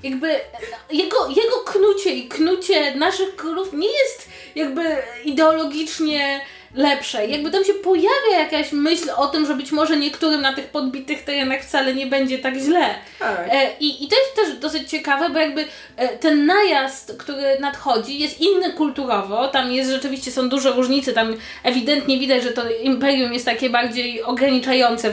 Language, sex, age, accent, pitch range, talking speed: Polish, female, 20-39, native, 250-315 Hz, 160 wpm